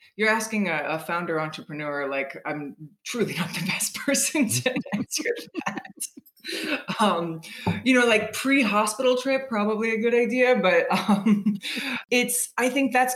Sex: female